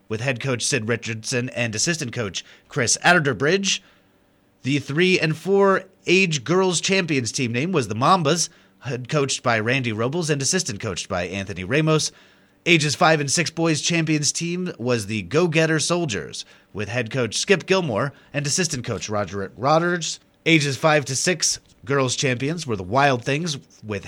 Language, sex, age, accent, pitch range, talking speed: English, male, 30-49, American, 115-165 Hz, 160 wpm